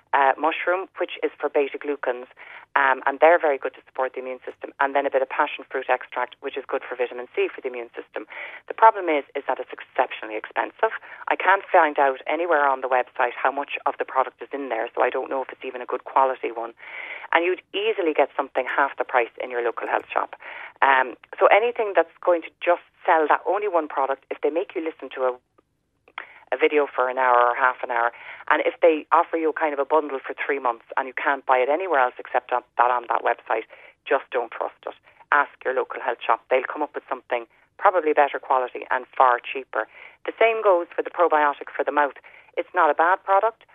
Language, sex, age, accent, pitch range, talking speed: English, female, 30-49, Irish, 130-180 Hz, 230 wpm